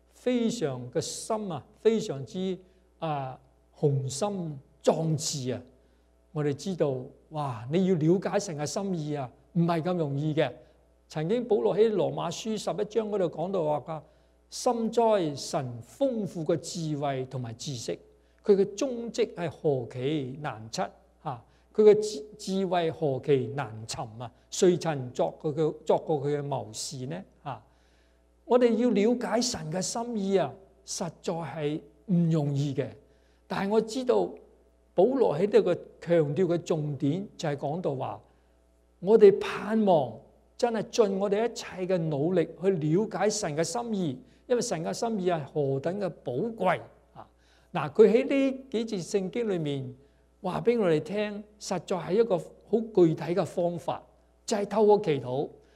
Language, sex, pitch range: English, male, 140-210 Hz